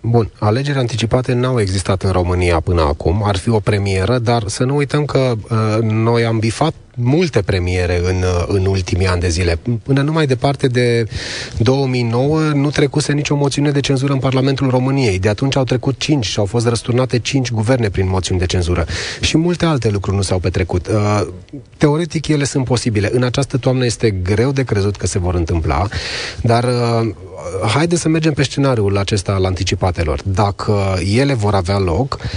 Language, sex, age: Romanian, male, 30-49